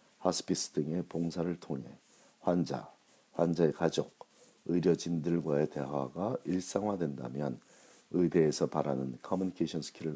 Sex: male